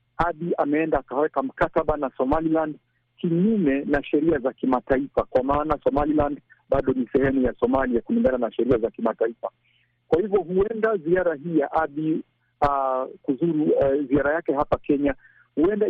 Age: 50-69